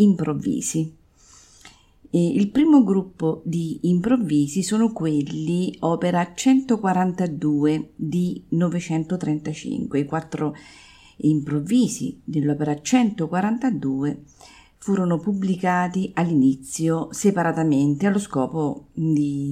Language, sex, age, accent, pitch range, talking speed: Italian, female, 50-69, native, 150-175 Hz, 75 wpm